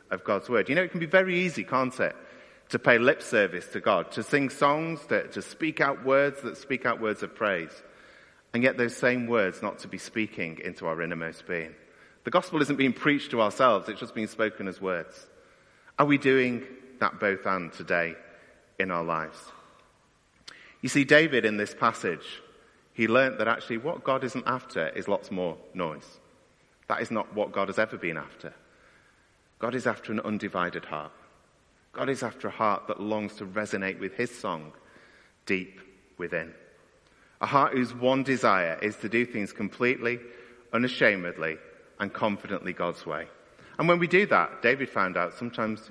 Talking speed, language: 180 wpm, English